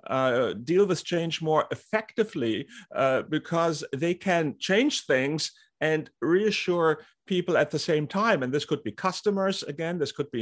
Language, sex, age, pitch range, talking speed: English, male, 50-69, 135-165 Hz, 160 wpm